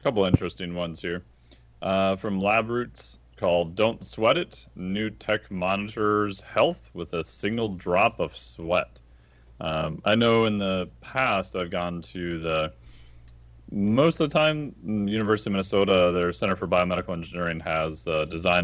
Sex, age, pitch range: male, 30-49, 80-105 Hz